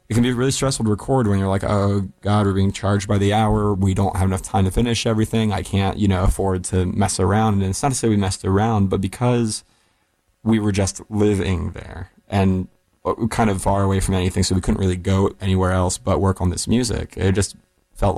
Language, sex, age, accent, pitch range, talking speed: English, male, 20-39, American, 90-100 Hz, 235 wpm